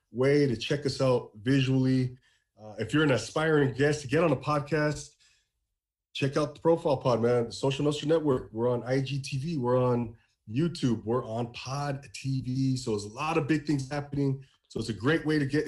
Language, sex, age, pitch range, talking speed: English, male, 30-49, 115-150 Hz, 195 wpm